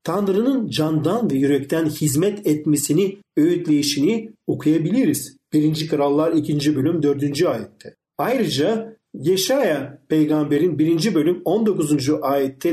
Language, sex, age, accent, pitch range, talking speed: Turkish, male, 50-69, native, 150-220 Hz, 100 wpm